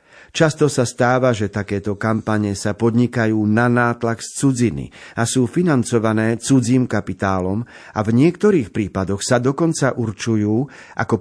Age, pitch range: 50-69, 105-135 Hz